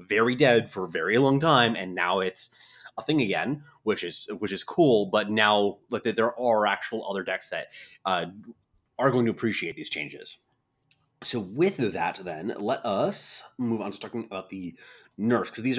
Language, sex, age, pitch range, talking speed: English, male, 30-49, 95-120 Hz, 185 wpm